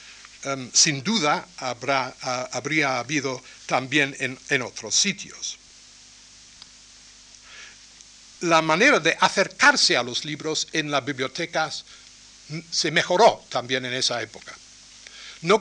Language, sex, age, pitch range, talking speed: Spanish, male, 60-79, 135-175 Hz, 100 wpm